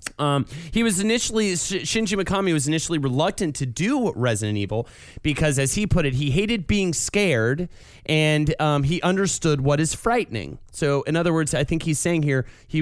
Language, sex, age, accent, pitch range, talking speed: English, male, 30-49, American, 125-175 Hz, 185 wpm